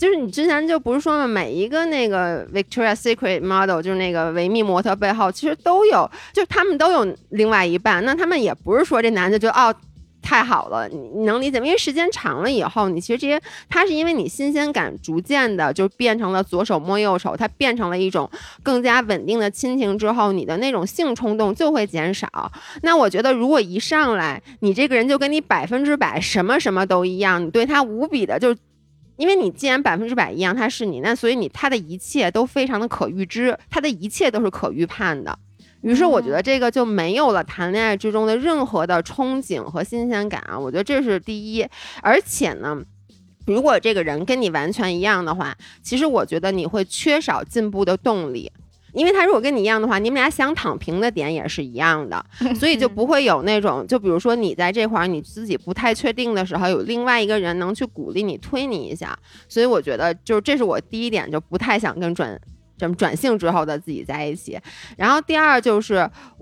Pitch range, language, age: 185-265 Hz, Chinese, 20-39